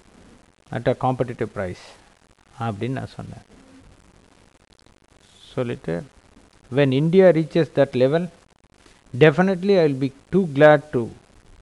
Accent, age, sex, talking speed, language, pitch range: native, 50-69, male, 110 wpm, Tamil, 100-135 Hz